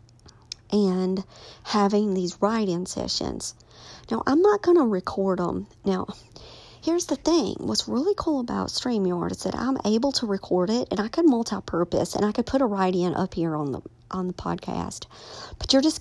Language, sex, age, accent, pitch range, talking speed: English, male, 50-69, American, 170-210 Hz, 175 wpm